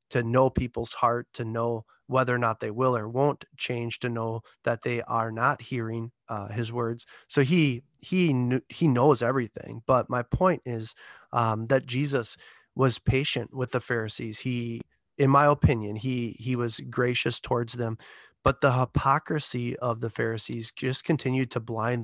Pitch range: 115-135 Hz